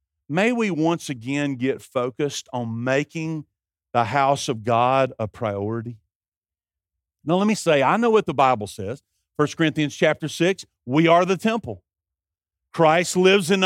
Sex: male